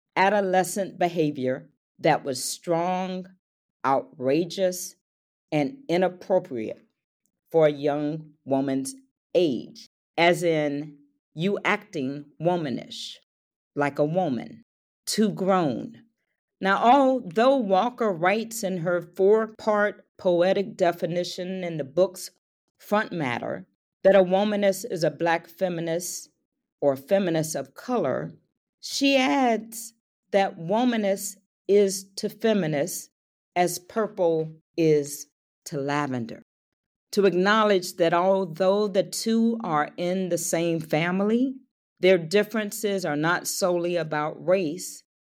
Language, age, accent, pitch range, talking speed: English, 40-59, American, 160-205 Hz, 105 wpm